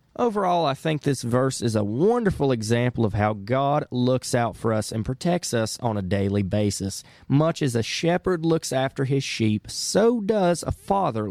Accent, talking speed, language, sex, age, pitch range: American, 185 wpm, English, male, 30-49, 115-160 Hz